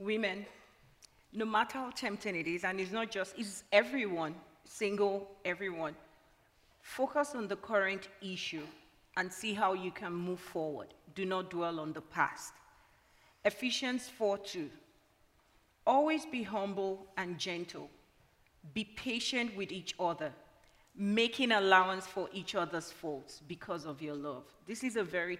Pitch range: 175-230 Hz